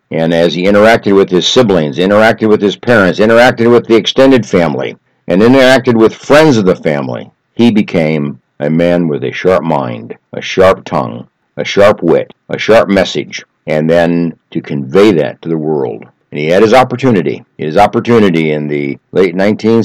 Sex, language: male, English